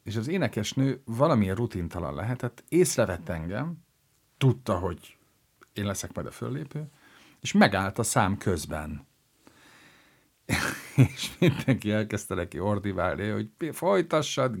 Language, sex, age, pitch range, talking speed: Hungarian, male, 50-69, 95-130 Hz, 120 wpm